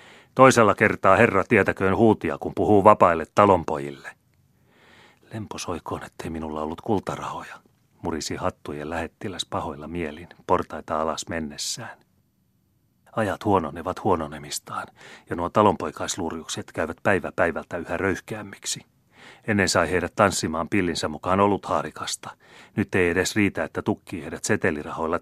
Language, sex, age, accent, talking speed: Finnish, male, 30-49, native, 115 wpm